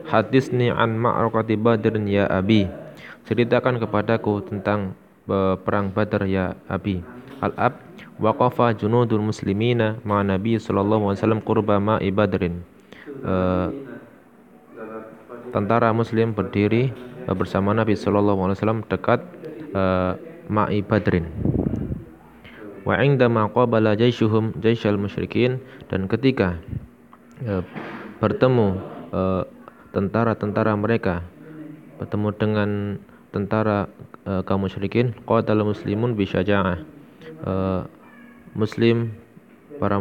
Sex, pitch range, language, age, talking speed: male, 95-115 Hz, Indonesian, 20-39, 95 wpm